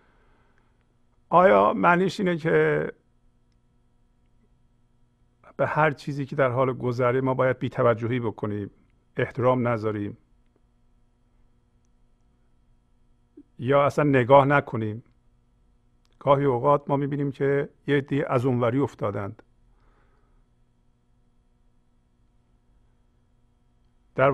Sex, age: male, 50-69